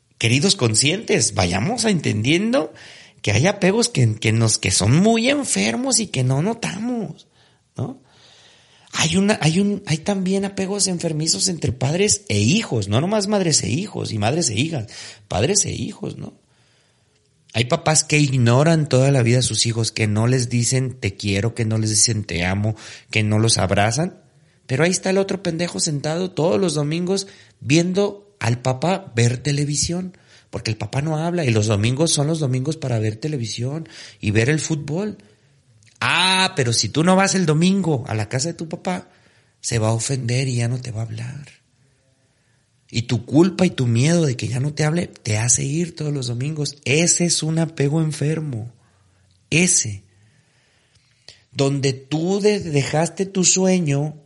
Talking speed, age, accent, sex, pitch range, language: 170 wpm, 40-59, Mexican, male, 115-170 Hz, Spanish